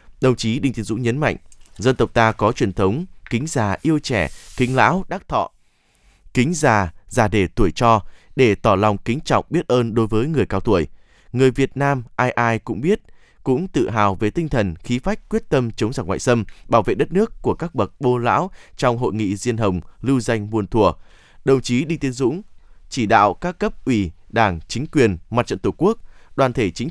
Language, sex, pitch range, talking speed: Vietnamese, male, 110-140 Hz, 220 wpm